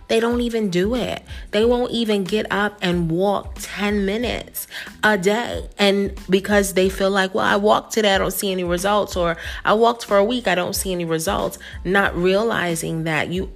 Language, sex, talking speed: English, female, 200 wpm